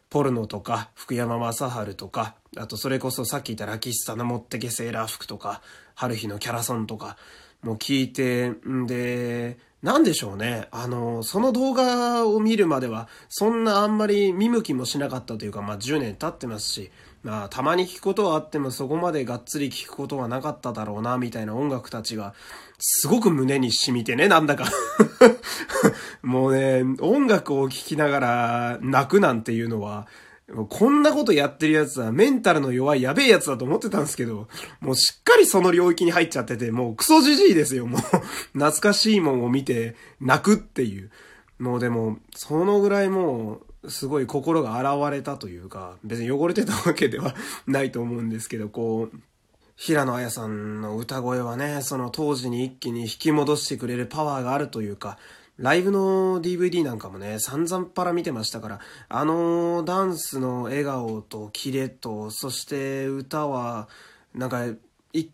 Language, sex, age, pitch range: Japanese, male, 20-39, 115-155 Hz